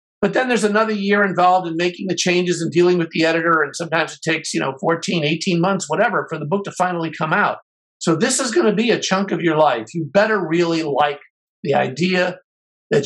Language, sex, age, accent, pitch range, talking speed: English, male, 50-69, American, 150-195 Hz, 230 wpm